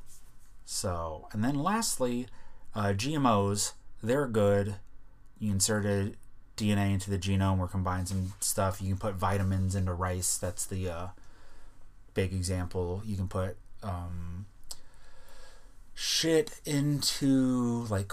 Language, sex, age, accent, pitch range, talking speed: English, male, 30-49, American, 95-120 Hz, 120 wpm